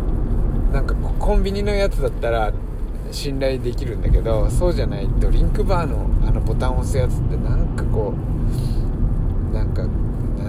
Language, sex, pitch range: Japanese, male, 105-120 Hz